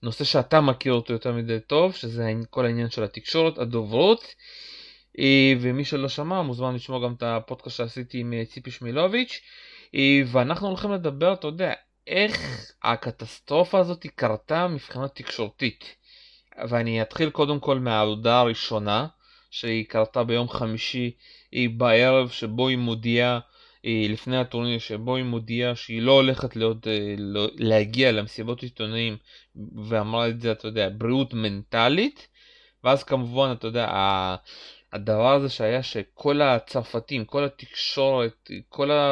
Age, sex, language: 30-49, male, Hebrew